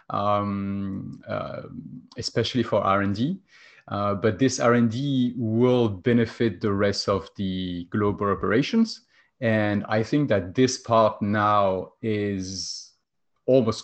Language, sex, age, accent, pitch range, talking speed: English, male, 30-49, French, 100-120 Hz, 110 wpm